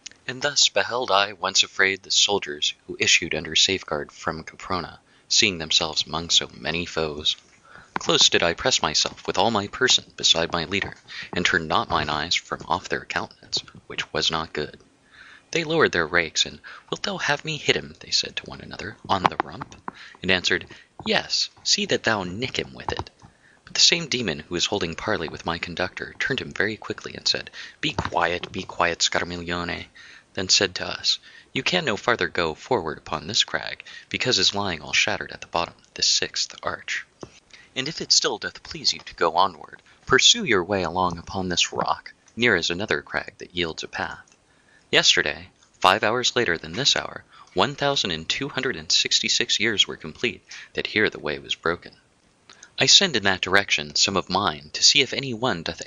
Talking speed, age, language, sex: 195 wpm, 30-49, English, male